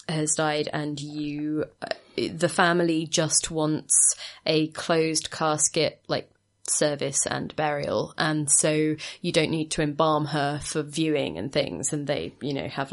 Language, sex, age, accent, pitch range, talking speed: English, female, 20-39, British, 150-175 Hz, 150 wpm